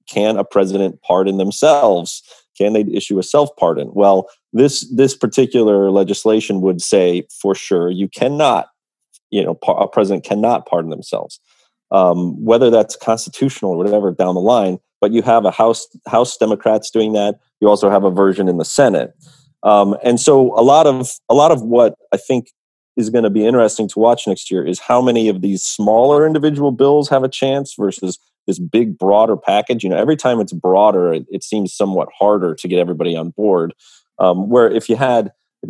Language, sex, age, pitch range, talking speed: English, male, 30-49, 95-120 Hz, 190 wpm